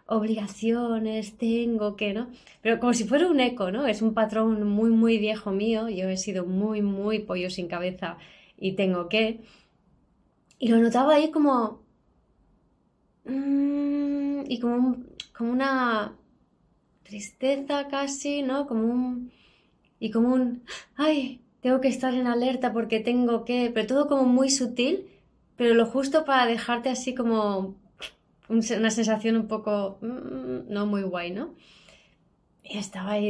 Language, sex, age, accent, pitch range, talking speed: Spanish, female, 20-39, Spanish, 205-250 Hz, 145 wpm